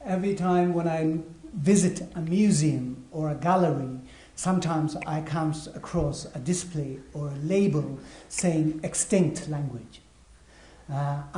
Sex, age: male, 60-79